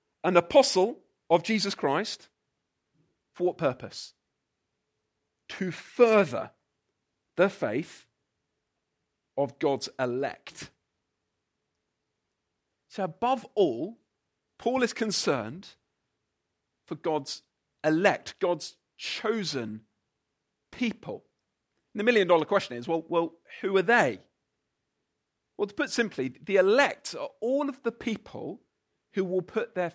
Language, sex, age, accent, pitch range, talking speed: English, male, 40-59, British, 175-235 Hz, 105 wpm